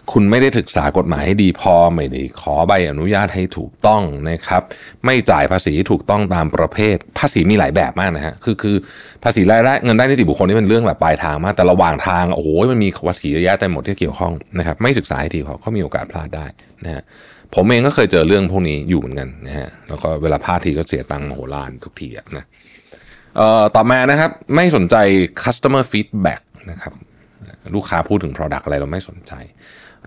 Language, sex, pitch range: Thai, male, 80-110 Hz